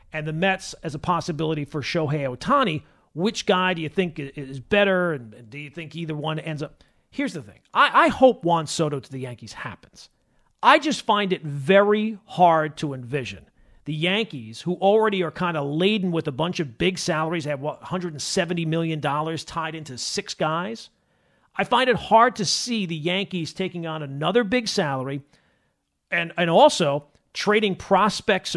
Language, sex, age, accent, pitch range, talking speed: English, male, 40-59, American, 145-195 Hz, 175 wpm